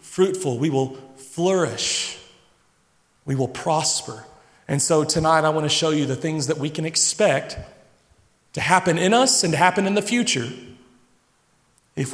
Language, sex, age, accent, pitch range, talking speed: English, male, 40-59, American, 160-215 Hz, 160 wpm